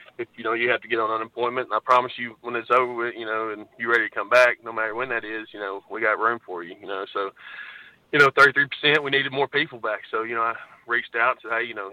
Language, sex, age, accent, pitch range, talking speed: English, male, 20-39, American, 105-120 Hz, 290 wpm